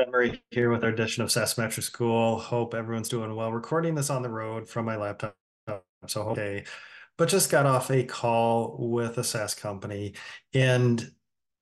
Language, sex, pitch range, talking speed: English, male, 110-130 Hz, 165 wpm